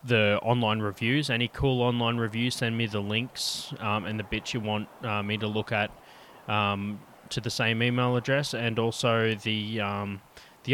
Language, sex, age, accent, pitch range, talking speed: English, male, 20-39, Australian, 105-120 Hz, 185 wpm